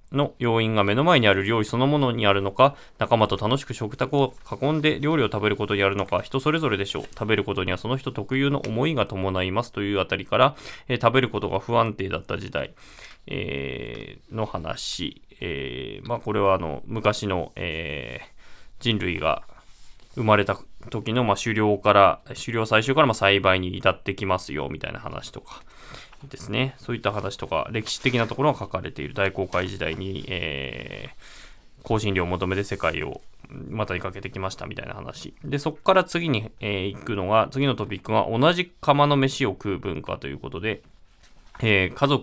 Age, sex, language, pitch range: 20-39, male, Japanese, 95-130 Hz